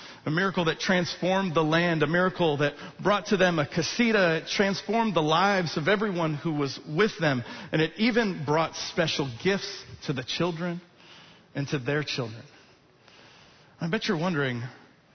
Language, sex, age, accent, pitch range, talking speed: English, male, 40-59, American, 150-205 Hz, 160 wpm